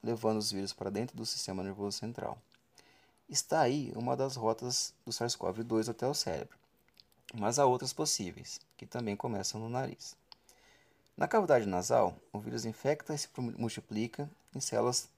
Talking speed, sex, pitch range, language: 155 wpm, male, 110-130 Hz, Portuguese